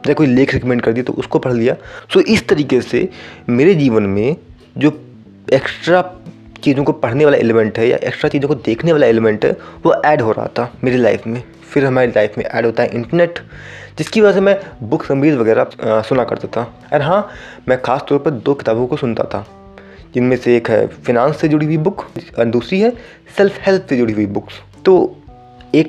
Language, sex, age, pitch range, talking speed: Hindi, male, 20-39, 115-150 Hz, 210 wpm